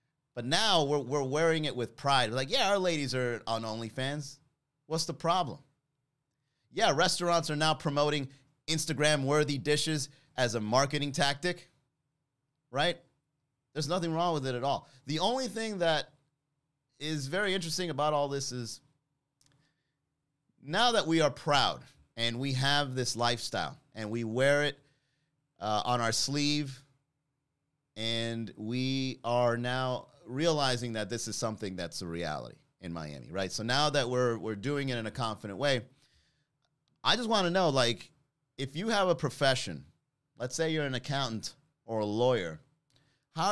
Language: English